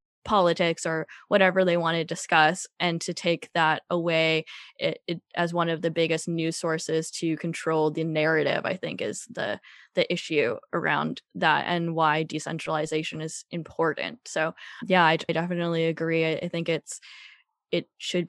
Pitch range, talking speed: 160-180 Hz, 165 wpm